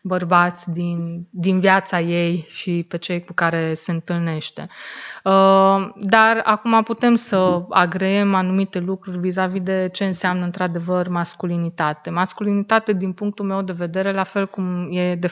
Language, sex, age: Romanian, female, 20-39